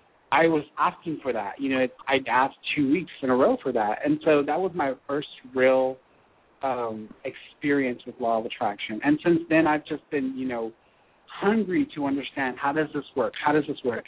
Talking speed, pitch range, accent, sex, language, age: 205 wpm, 130-150 Hz, American, male, English, 30-49